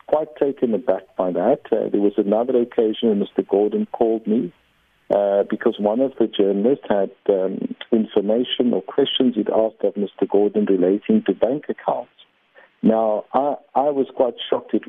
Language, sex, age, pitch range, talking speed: English, male, 50-69, 105-125 Hz, 160 wpm